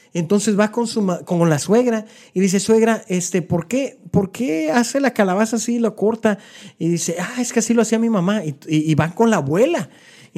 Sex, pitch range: male, 140-195 Hz